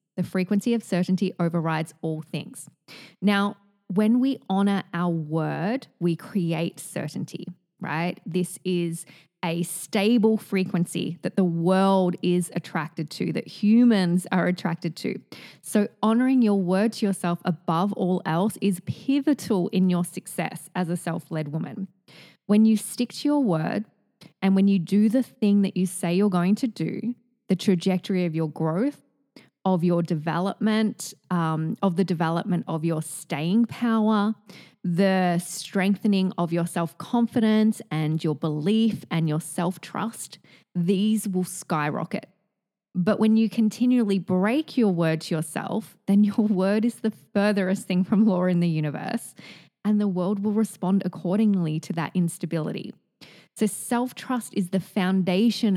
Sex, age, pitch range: female, 20-39, 170-210 Hz